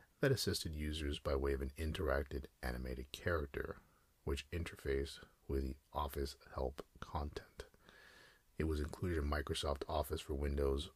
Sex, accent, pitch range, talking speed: male, American, 70-85 Hz, 135 wpm